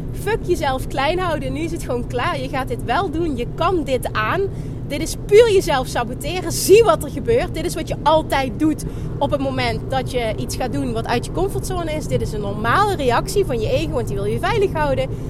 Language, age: Dutch, 30-49